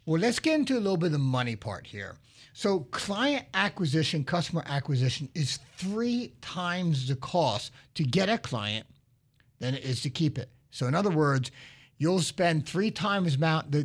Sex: male